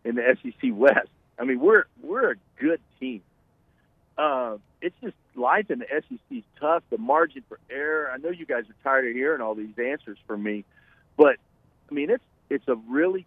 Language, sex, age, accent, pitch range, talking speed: English, male, 50-69, American, 115-155 Hz, 200 wpm